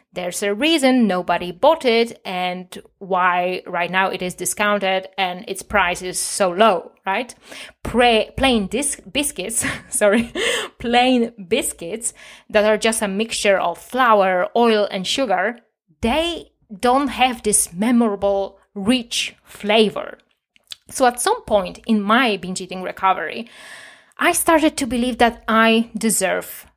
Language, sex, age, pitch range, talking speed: English, female, 20-39, 190-245 Hz, 135 wpm